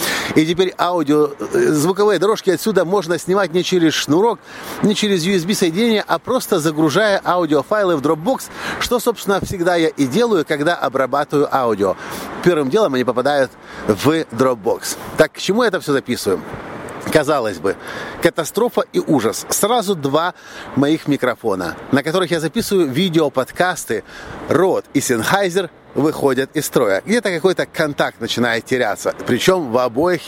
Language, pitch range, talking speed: Russian, 140-190 Hz, 145 wpm